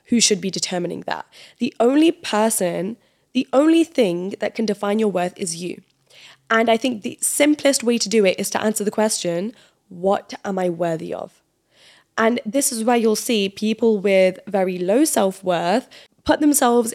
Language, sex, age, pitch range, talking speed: English, female, 10-29, 195-255 Hz, 175 wpm